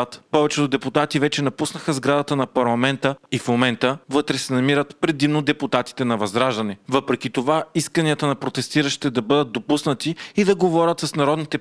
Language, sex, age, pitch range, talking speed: Bulgarian, male, 30-49, 120-150 Hz, 155 wpm